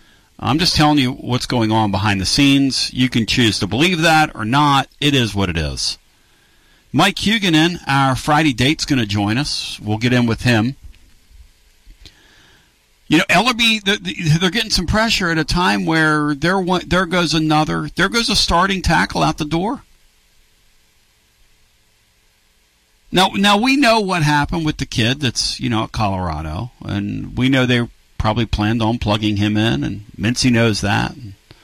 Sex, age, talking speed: male, 50-69, 165 wpm